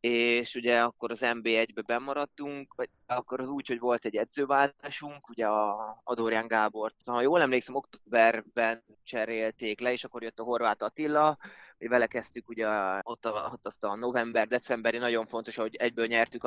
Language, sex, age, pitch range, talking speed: Hungarian, male, 20-39, 110-130 Hz, 170 wpm